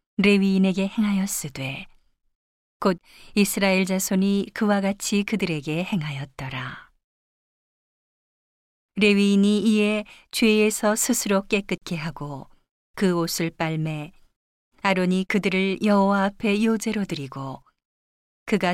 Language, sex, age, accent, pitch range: Korean, female, 40-59, native, 165-200 Hz